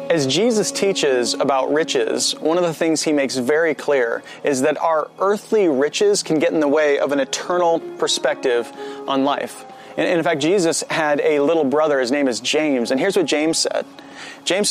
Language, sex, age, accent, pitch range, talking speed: English, male, 30-49, American, 140-185 Hz, 190 wpm